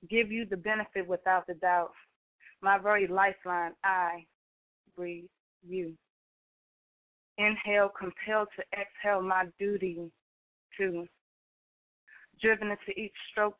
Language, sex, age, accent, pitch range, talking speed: English, female, 20-39, American, 180-205 Hz, 105 wpm